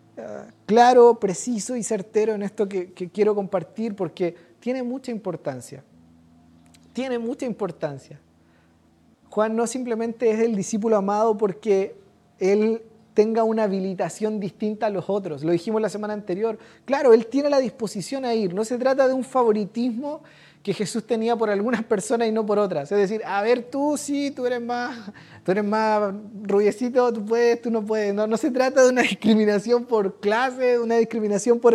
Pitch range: 195-235 Hz